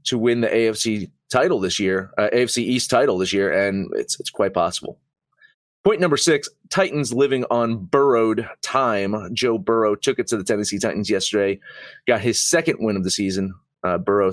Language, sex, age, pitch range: English, male, 30-49, 100-135 Hz